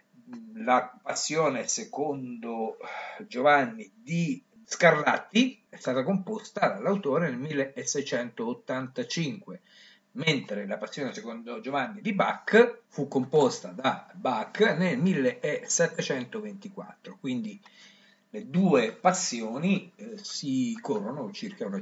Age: 50-69